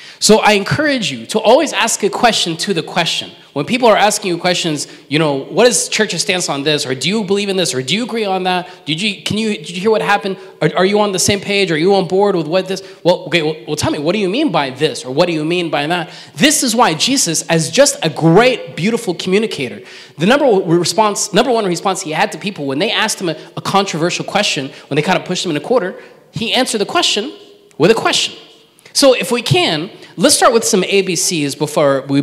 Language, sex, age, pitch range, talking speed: English, male, 20-39, 155-210 Hz, 255 wpm